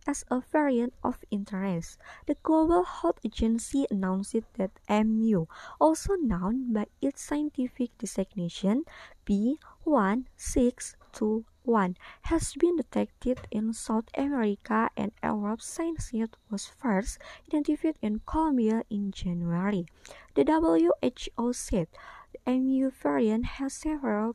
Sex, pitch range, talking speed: male, 200-275 Hz, 105 wpm